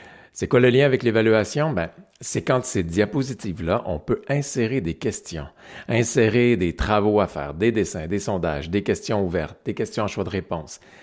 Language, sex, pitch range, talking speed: French, male, 85-115 Hz, 185 wpm